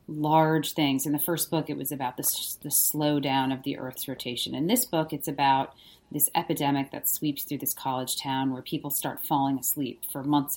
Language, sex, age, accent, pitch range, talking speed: English, female, 30-49, American, 135-160 Hz, 205 wpm